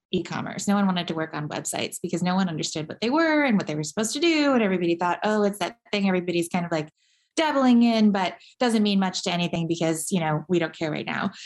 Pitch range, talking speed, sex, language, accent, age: 170-200 Hz, 255 wpm, female, English, American, 20-39